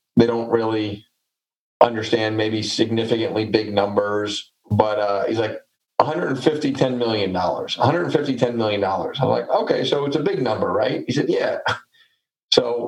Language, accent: English, American